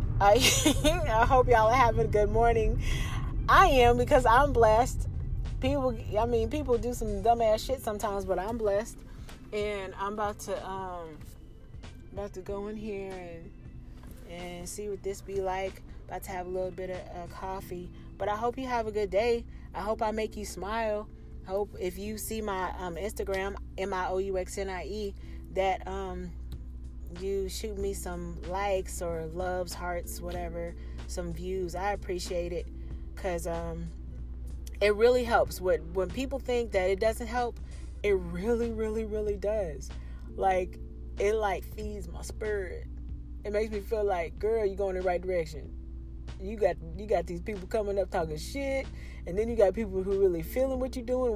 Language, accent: English, American